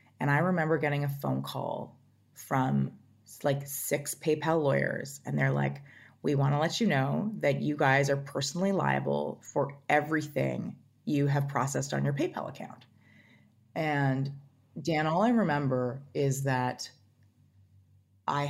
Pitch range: 125-150 Hz